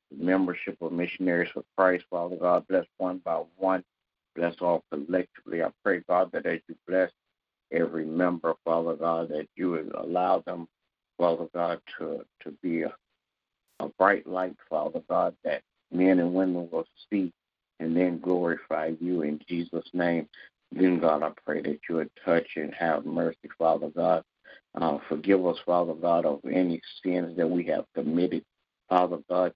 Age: 60-79